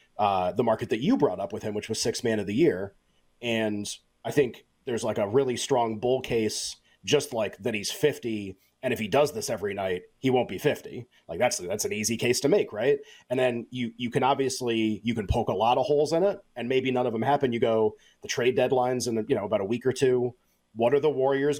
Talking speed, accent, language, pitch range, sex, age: 245 wpm, American, English, 115-140 Hz, male, 30-49